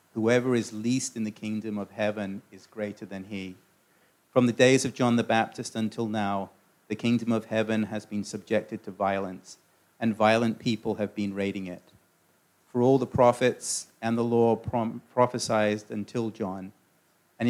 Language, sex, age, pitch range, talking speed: English, male, 40-59, 105-120 Hz, 170 wpm